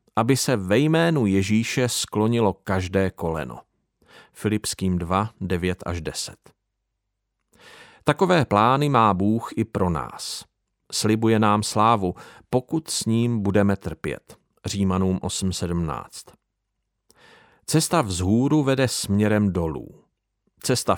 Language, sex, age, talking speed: Czech, male, 40-59, 105 wpm